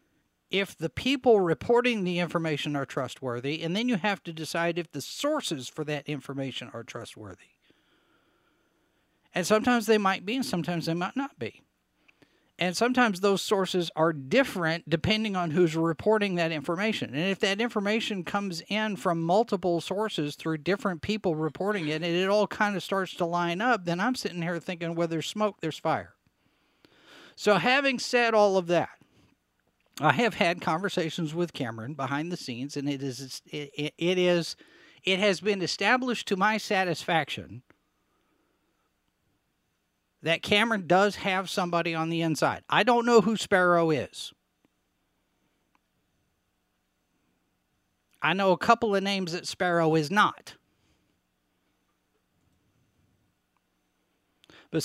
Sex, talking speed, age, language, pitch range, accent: male, 145 wpm, 50-69, English, 155-210 Hz, American